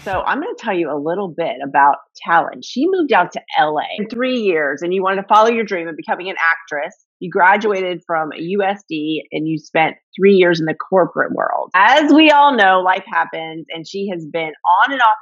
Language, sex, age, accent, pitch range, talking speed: English, female, 30-49, American, 155-215 Hz, 215 wpm